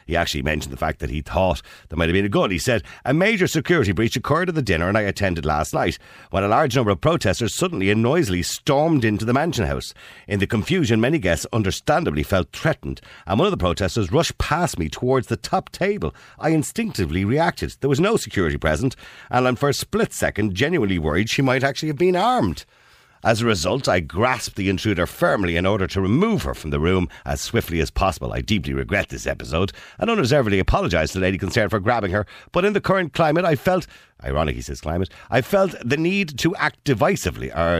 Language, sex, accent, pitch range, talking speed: English, male, Irish, 80-130 Hz, 220 wpm